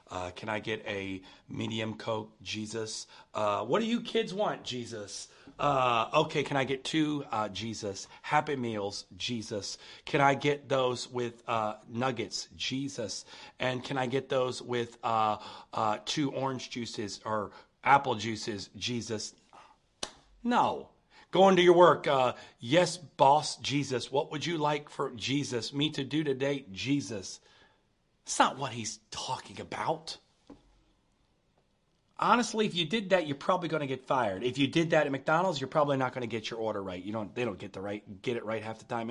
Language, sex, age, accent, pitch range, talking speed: English, male, 40-59, American, 115-145 Hz, 175 wpm